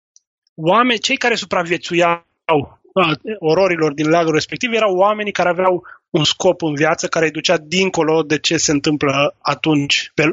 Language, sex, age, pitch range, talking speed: Romanian, male, 20-39, 155-195 Hz, 150 wpm